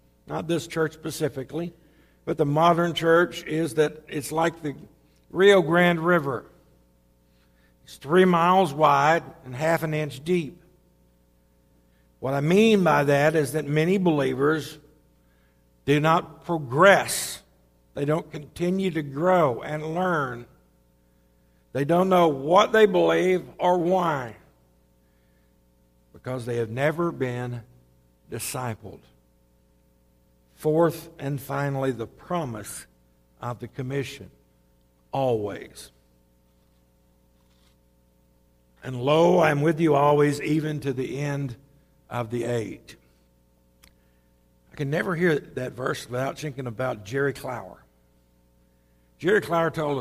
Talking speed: 115 wpm